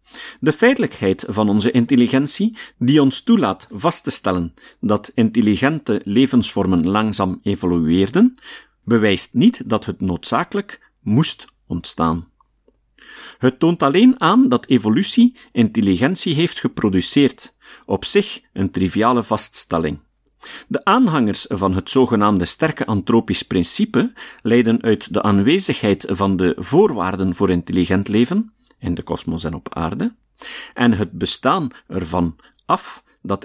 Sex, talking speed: male, 120 wpm